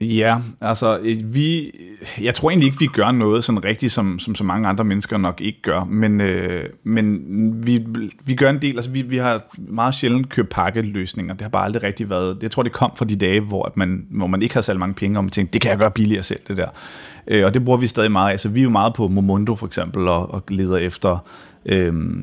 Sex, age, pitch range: male, 30-49, 95-120 Hz